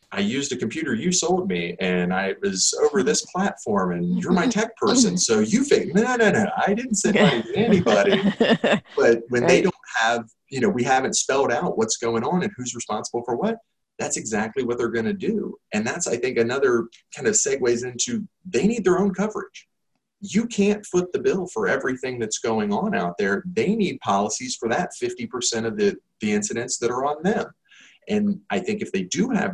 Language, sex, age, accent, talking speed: English, male, 30-49, American, 205 wpm